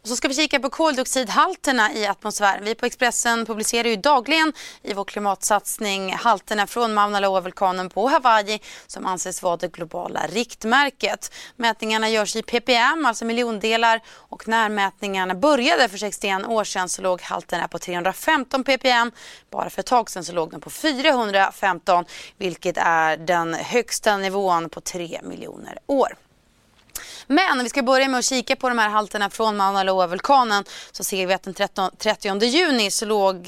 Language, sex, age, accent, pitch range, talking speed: Swedish, female, 30-49, native, 185-245 Hz, 165 wpm